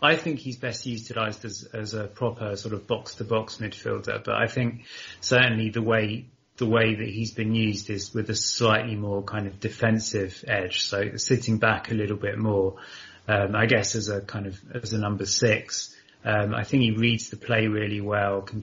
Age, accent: 30-49, British